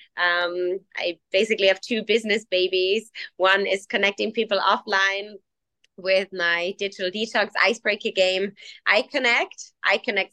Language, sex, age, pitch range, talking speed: English, female, 20-39, 180-200 Hz, 130 wpm